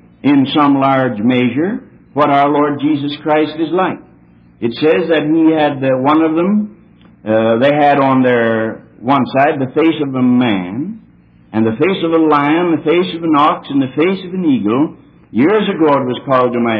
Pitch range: 125-170 Hz